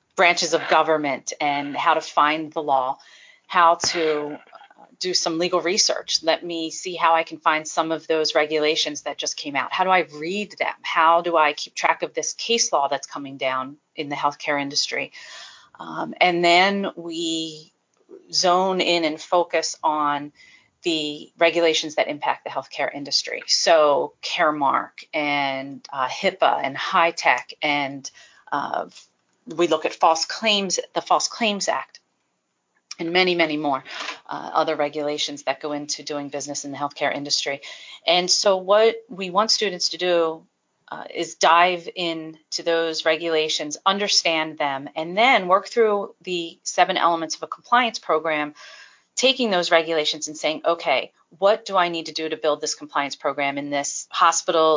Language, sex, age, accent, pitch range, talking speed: English, female, 40-59, American, 150-180 Hz, 165 wpm